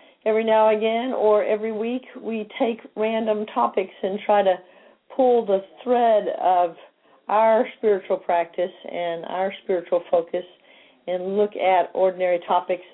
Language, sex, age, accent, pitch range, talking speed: English, female, 50-69, American, 175-215 Hz, 140 wpm